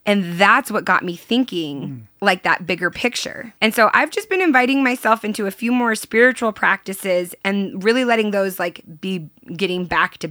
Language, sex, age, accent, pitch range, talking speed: English, female, 20-39, American, 185-235 Hz, 185 wpm